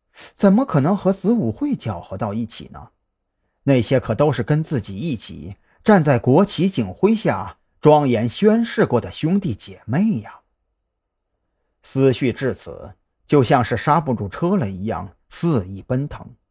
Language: Chinese